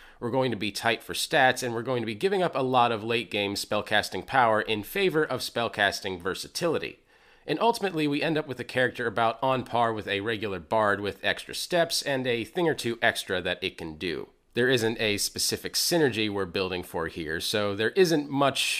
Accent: American